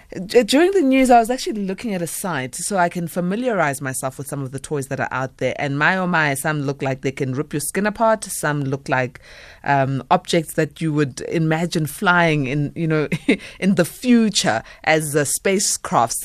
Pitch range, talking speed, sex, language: 135-175 Hz, 205 wpm, female, English